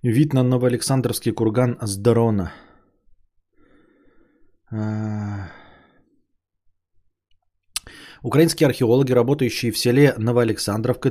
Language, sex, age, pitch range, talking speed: Bulgarian, male, 20-39, 110-130 Hz, 65 wpm